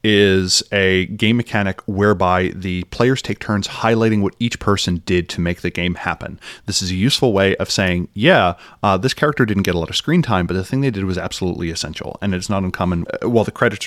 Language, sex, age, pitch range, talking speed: English, male, 30-49, 90-115 Hz, 225 wpm